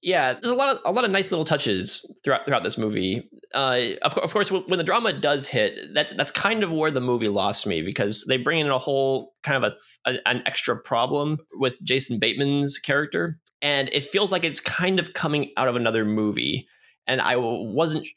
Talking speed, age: 215 wpm, 20-39